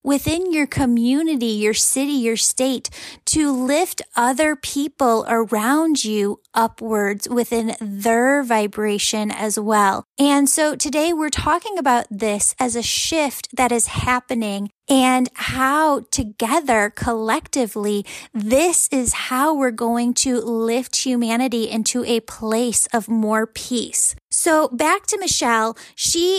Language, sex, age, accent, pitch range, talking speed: English, female, 10-29, American, 230-285 Hz, 125 wpm